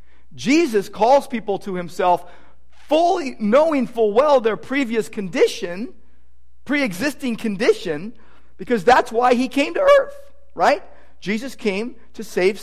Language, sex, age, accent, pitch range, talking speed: English, male, 50-69, American, 150-235 Hz, 120 wpm